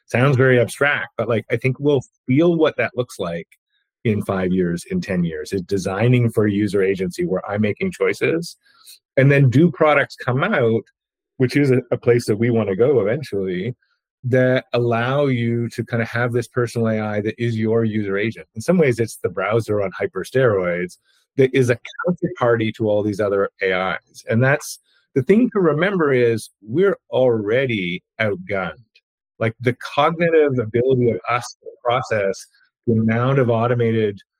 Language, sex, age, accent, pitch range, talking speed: English, male, 30-49, American, 110-135 Hz, 175 wpm